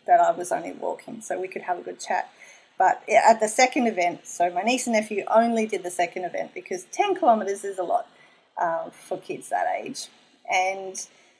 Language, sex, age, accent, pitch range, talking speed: English, female, 30-49, Australian, 200-275 Hz, 205 wpm